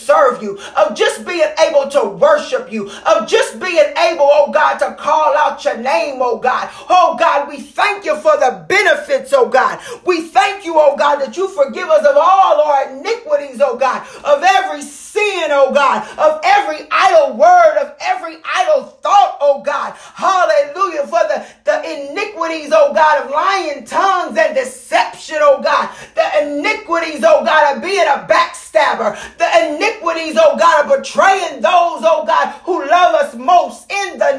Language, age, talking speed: English, 40-59, 170 wpm